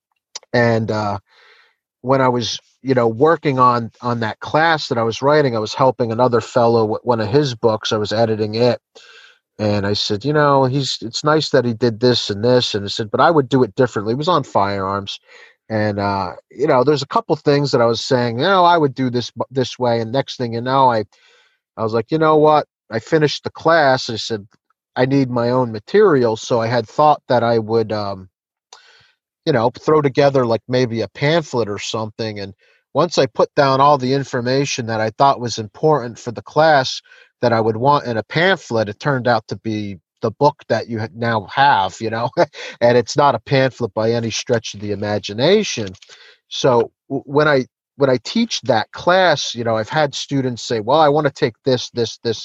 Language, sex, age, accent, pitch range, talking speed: English, male, 30-49, American, 110-145 Hz, 215 wpm